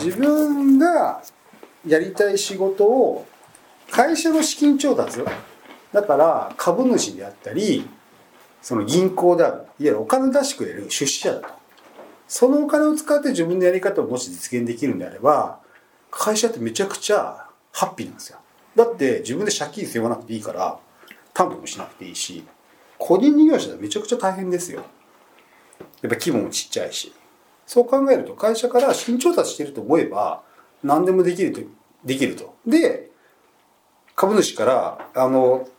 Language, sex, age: Japanese, male, 40-59